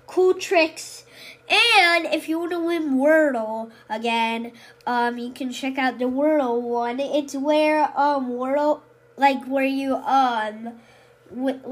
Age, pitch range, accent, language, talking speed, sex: 10-29, 235-285 Hz, American, English, 140 wpm, female